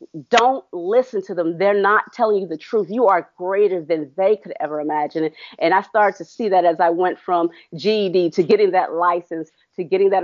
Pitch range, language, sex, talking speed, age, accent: 170-235 Hz, English, female, 210 wpm, 40-59, American